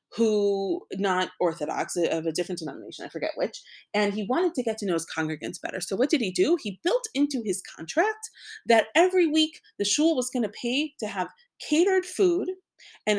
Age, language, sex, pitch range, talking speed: 30-49, English, female, 190-295 Hz, 200 wpm